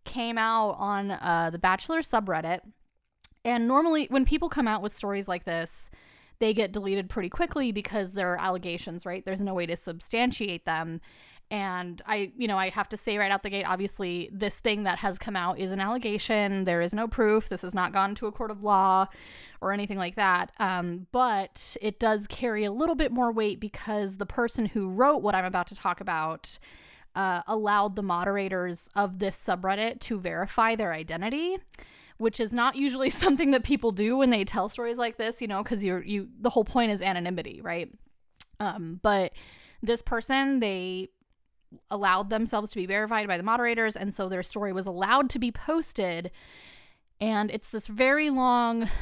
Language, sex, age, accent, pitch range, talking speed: English, female, 20-39, American, 190-230 Hz, 190 wpm